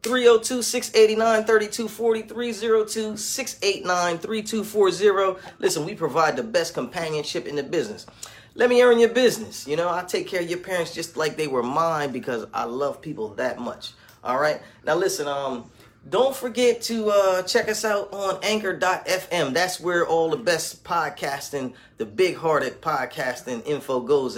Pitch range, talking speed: 165-220 Hz, 145 wpm